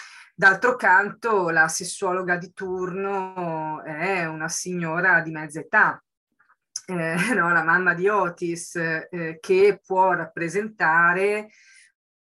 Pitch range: 170-200 Hz